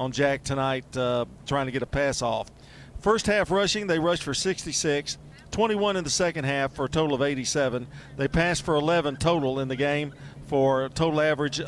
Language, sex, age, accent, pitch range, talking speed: English, male, 40-59, American, 135-165 Hz, 200 wpm